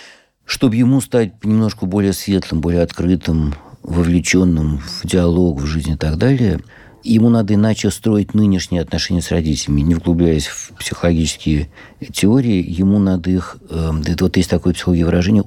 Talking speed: 145 wpm